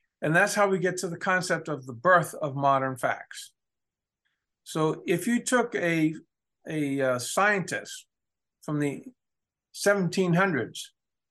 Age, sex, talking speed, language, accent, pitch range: 50-69, male, 135 wpm, English, American, 145-195 Hz